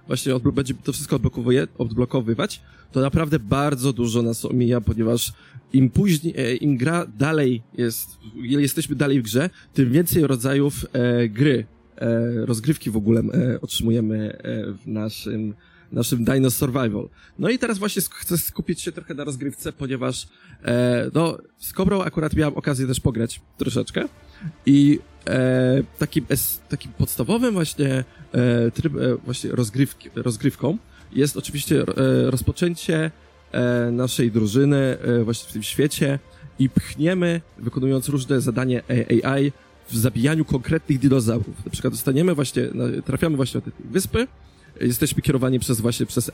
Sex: male